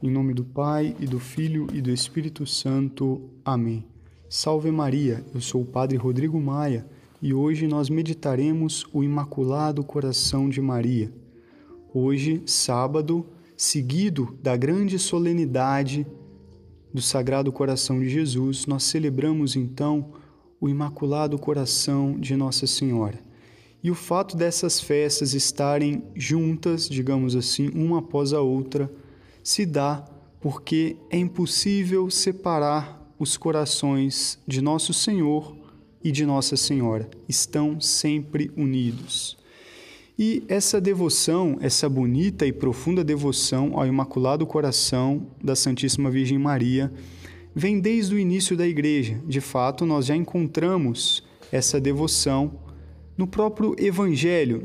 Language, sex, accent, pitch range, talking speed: Portuguese, male, Brazilian, 130-160 Hz, 120 wpm